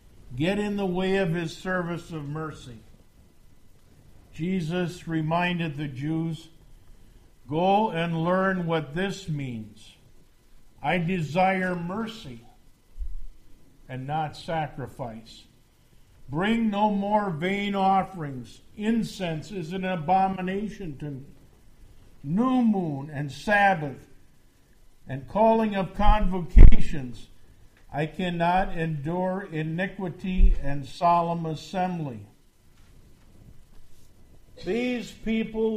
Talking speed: 85 wpm